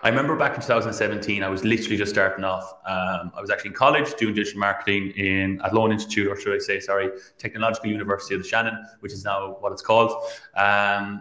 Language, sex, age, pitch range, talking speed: English, male, 20-39, 100-120 Hz, 220 wpm